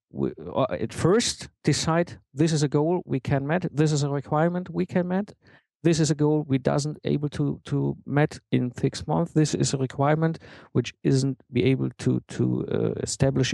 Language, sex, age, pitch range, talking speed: English, male, 50-69, 135-160 Hz, 195 wpm